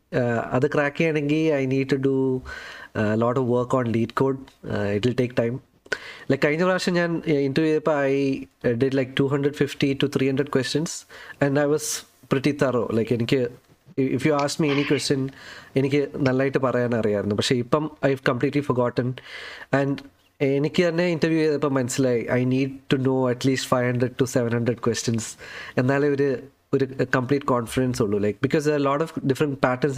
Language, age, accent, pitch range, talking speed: Malayalam, 20-39, native, 130-150 Hz, 175 wpm